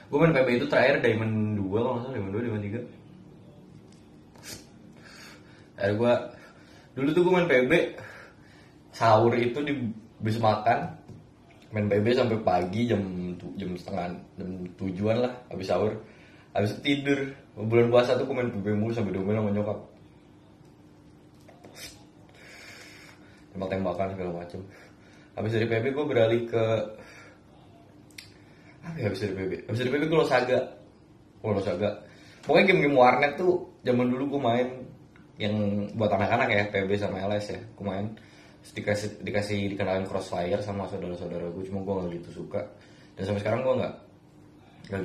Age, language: 20-39, Indonesian